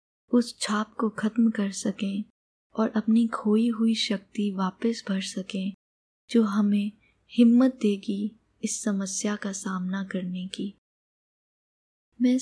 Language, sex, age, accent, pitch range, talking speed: Hindi, female, 20-39, native, 195-225 Hz, 120 wpm